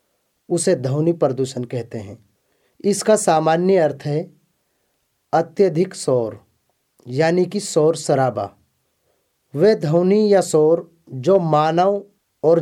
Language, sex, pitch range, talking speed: English, male, 135-175 Hz, 105 wpm